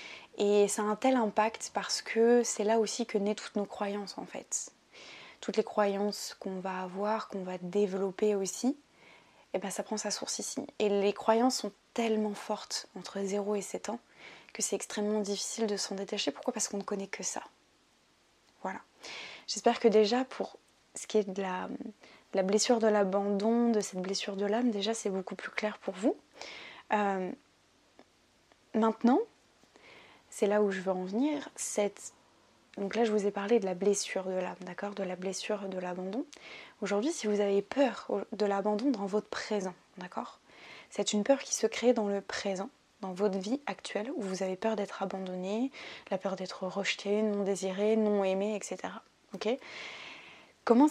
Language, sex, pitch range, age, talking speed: French, female, 195-225 Hz, 20-39, 180 wpm